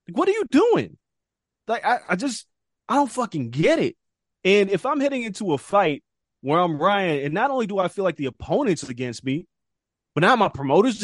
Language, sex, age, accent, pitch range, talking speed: English, male, 20-39, American, 135-195 Hz, 210 wpm